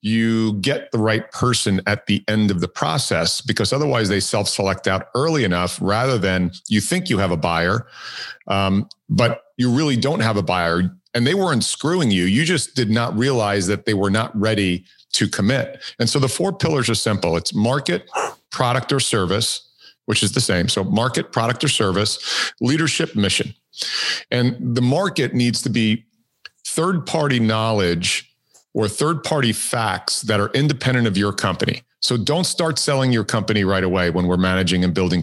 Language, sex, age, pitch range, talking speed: English, male, 50-69, 100-125 Hz, 175 wpm